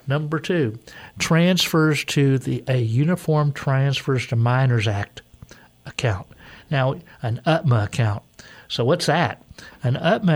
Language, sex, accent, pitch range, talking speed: English, male, American, 120-145 Hz, 120 wpm